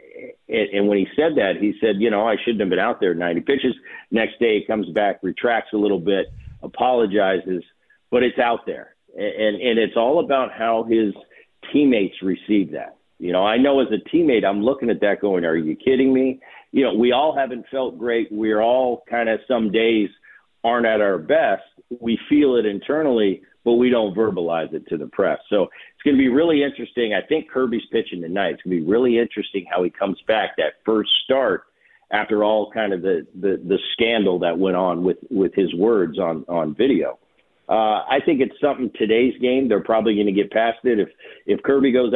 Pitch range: 100-125 Hz